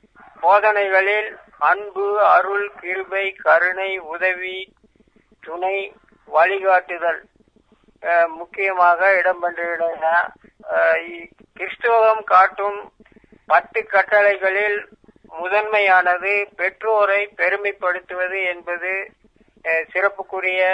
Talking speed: 55 wpm